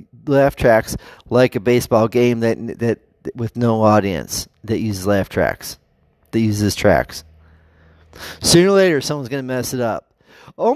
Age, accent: 30-49, American